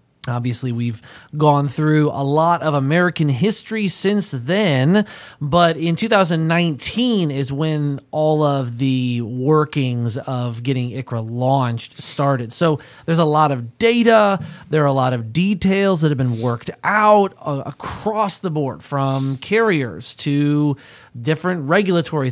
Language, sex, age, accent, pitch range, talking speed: English, male, 30-49, American, 135-185 Hz, 135 wpm